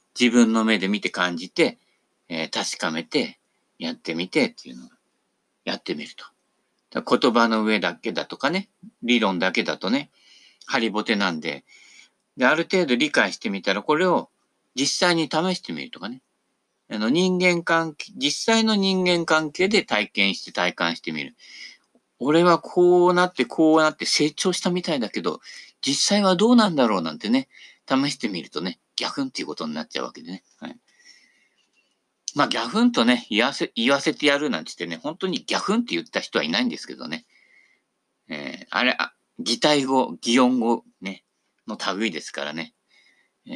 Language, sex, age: Japanese, male, 50-69